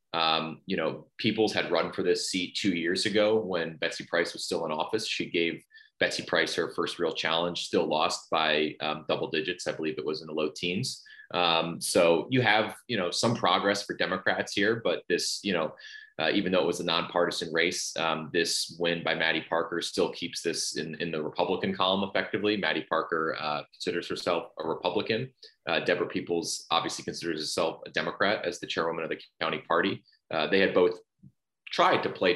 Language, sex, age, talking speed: English, male, 30-49, 200 wpm